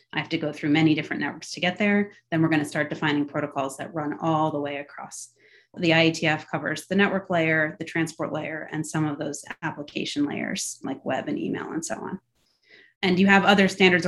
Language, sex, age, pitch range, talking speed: English, female, 30-49, 150-185 Hz, 215 wpm